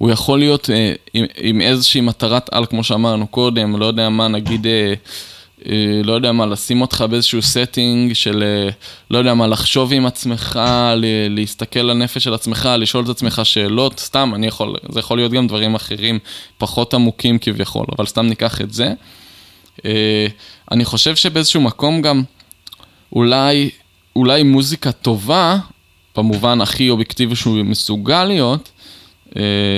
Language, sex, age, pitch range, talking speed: Hebrew, male, 20-39, 105-130 Hz, 135 wpm